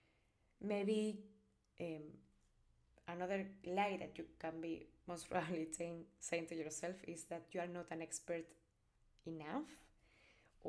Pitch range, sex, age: 165-200 Hz, female, 20-39